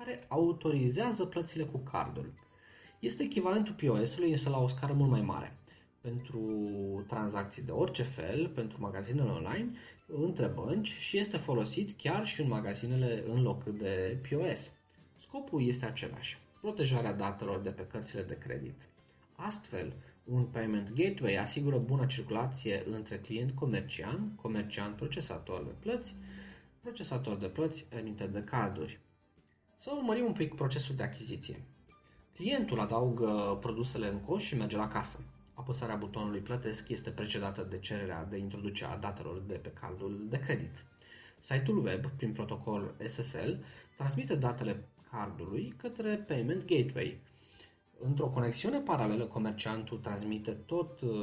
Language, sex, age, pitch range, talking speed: Romanian, male, 20-39, 105-150 Hz, 135 wpm